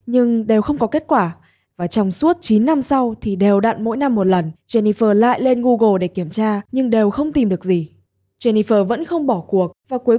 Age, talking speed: 10-29, 230 wpm